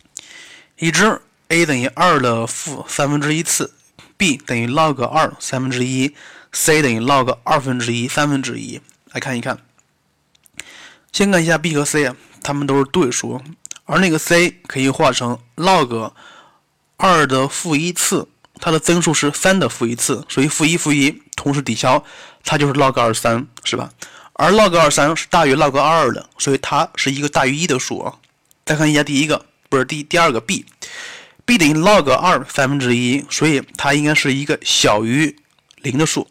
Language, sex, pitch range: Chinese, male, 130-160 Hz